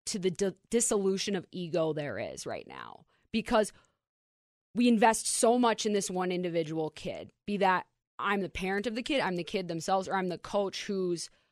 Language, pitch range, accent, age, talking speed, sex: English, 170-200 Hz, American, 20-39, 195 wpm, female